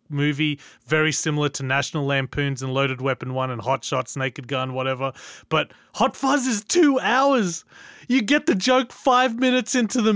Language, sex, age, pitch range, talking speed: English, male, 30-49, 140-180 Hz, 175 wpm